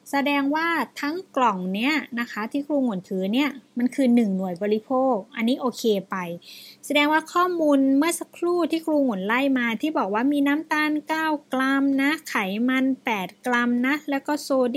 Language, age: Thai, 20-39